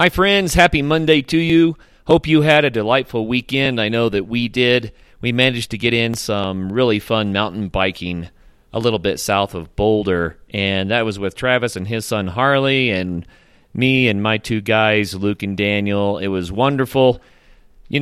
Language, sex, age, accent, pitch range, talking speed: English, male, 30-49, American, 100-130 Hz, 185 wpm